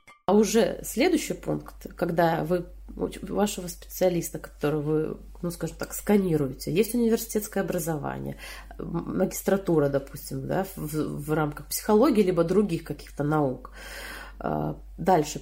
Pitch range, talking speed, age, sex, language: 155-210 Hz, 115 wpm, 30-49, female, Russian